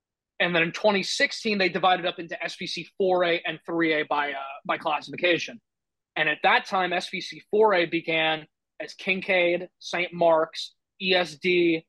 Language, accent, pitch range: English, American, 155-180 Hz